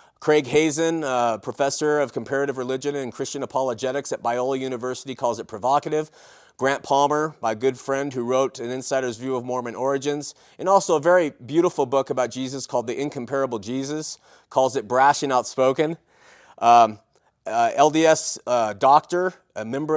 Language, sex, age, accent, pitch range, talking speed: English, male, 30-49, American, 135-170 Hz, 160 wpm